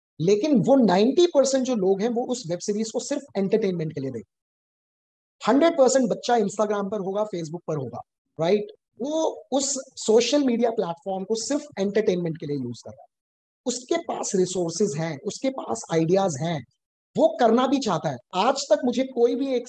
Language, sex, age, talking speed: English, male, 20-39, 180 wpm